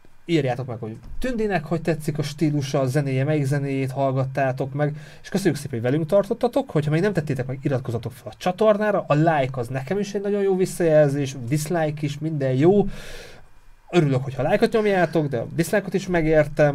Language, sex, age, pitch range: Hungarian, male, 30-49, 125-165 Hz